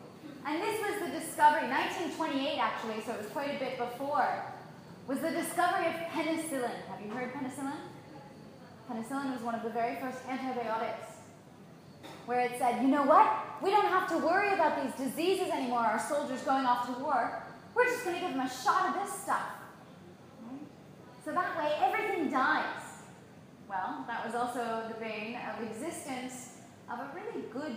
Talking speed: 175 wpm